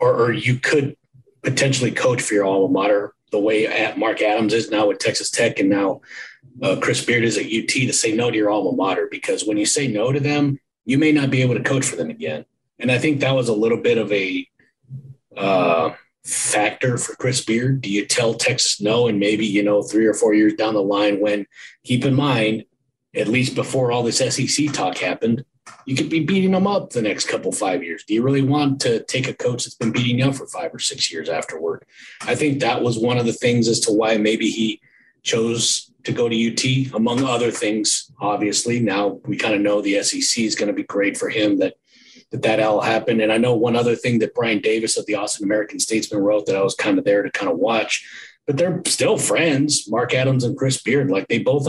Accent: American